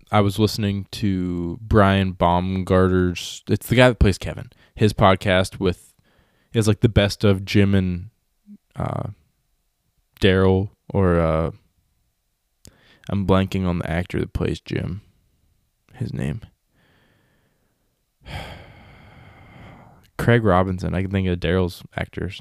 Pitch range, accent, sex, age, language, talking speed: 90-110 Hz, American, male, 20-39, English, 120 wpm